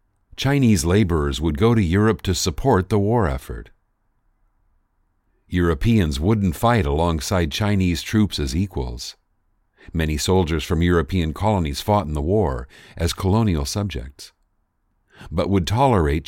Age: 50-69